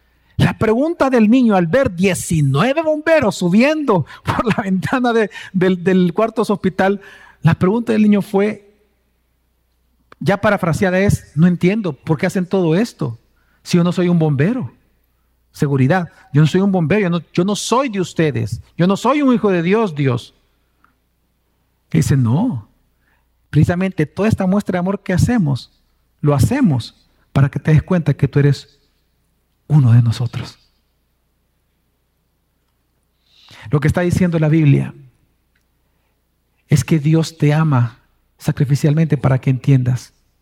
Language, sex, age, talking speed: Spanish, male, 50-69, 150 wpm